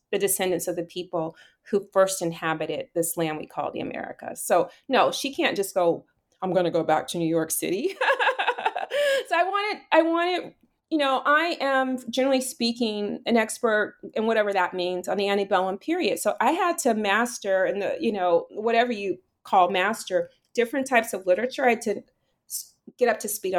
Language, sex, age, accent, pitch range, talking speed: English, female, 30-49, American, 195-295 Hz, 190 wpm